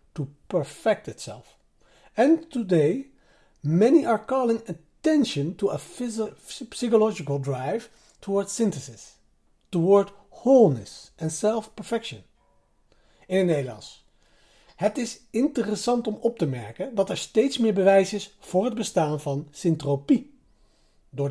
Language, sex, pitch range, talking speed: Dutch, male, 155-240 Hz, 120 wpm